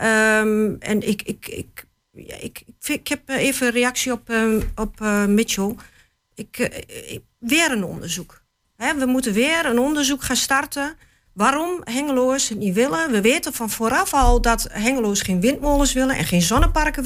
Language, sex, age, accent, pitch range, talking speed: Dutch, female, 40-59, Dutch, 235-300 Hz, 165 wpm